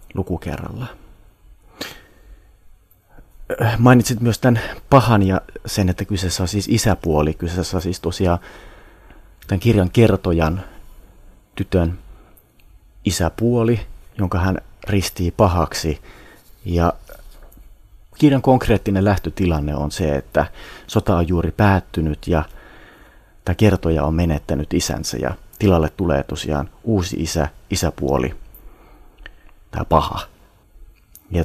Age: 30-49